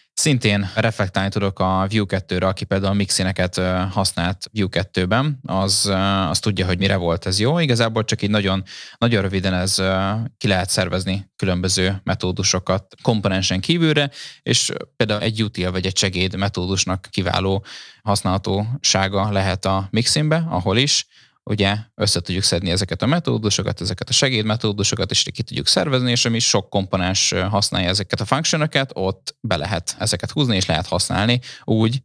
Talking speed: 150 wpm